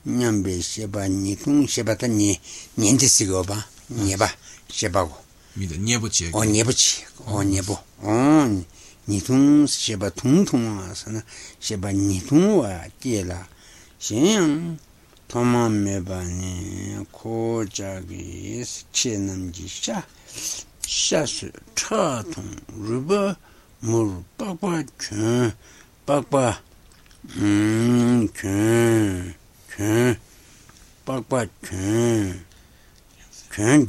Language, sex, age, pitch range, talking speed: Italian, male, 60-79, 95-120 Hz, 45 wpm